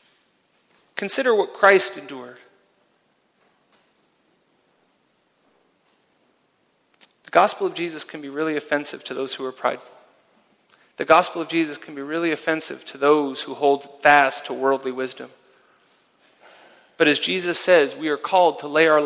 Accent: American